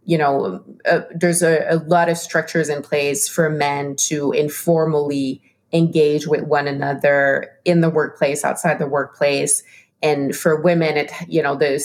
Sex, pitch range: female, 145-170 Hz